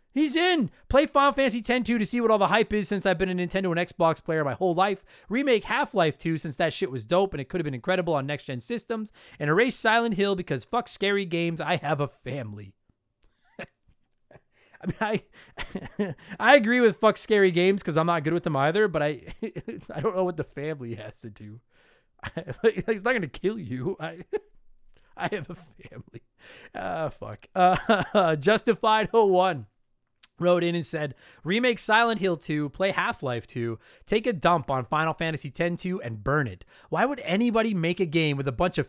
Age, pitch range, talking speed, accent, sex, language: 30-49, 140-210 Hz, 200 wpm, American, male, English